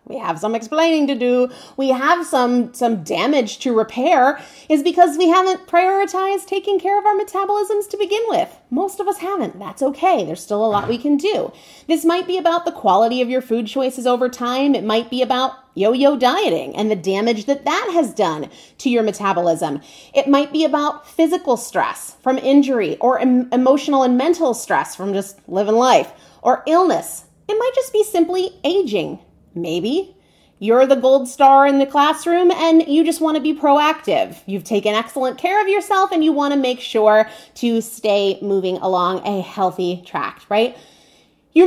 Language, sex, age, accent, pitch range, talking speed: English, female, 30-49, American, 225-340 Hz, 185 wpm